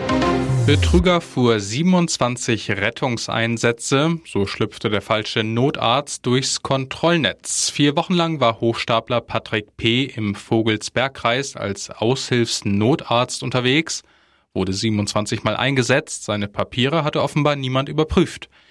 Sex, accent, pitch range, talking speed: male, German, 110-135 Hz, 105 wpm